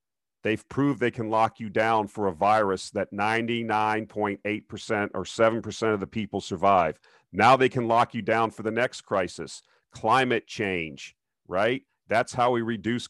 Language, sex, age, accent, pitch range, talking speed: English, male, 50-69, American, 100-120 Hz, 160 wpm